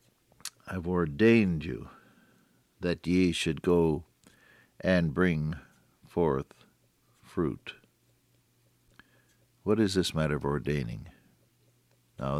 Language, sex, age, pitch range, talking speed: English, male, 60-79, 80-120 Hz, 85 wpm